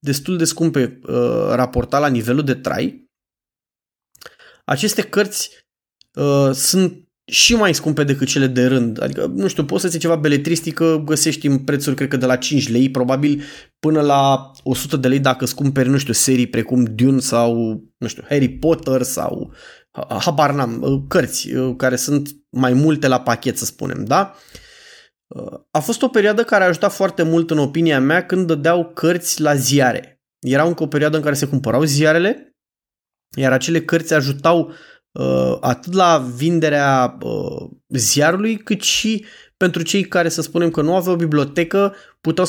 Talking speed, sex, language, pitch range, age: 165 wpm, male, Romanian, 135-175 Hz, 20-39